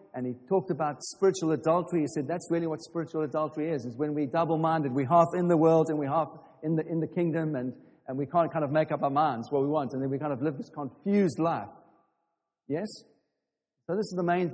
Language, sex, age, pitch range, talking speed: English, male, 50-69, 145-170 Hz, 245 wpm